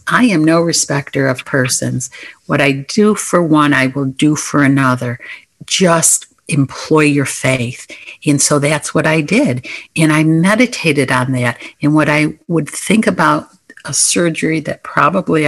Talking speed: 160 wpm